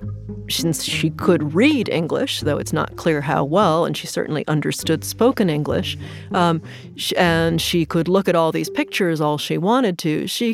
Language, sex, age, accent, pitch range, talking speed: English, female, 40-59, American, 155-200 Hz, 175 wpm